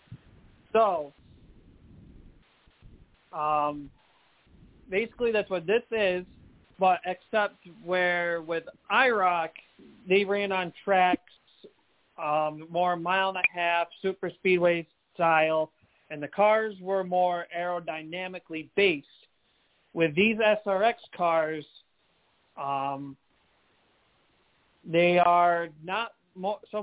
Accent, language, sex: American, English, male